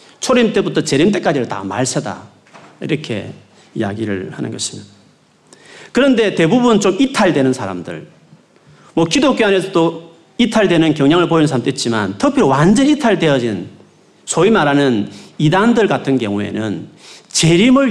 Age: 40-59